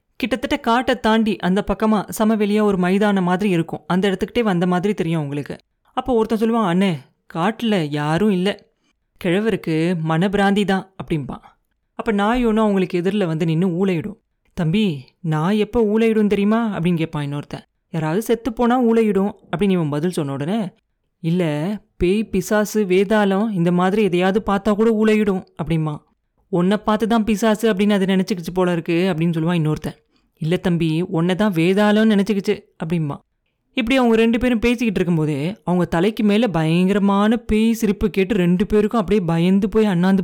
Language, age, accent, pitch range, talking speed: Tamil, 30-49, native, 175-220 Hz, 150 wpm